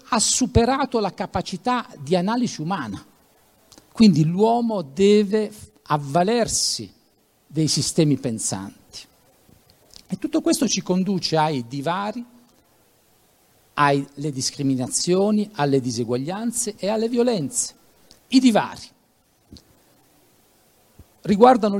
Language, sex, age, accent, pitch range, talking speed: Italian, male, 50-69, native, 145-230 Hz, 85 wpm